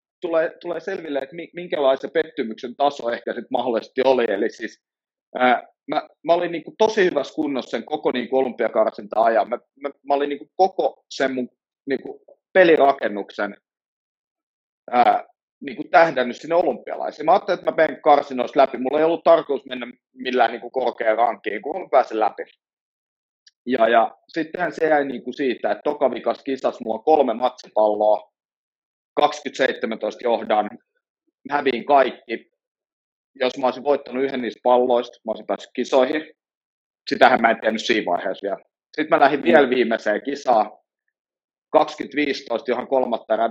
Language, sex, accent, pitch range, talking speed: Finnish, male, native, 125-165 Hz, 150 wpm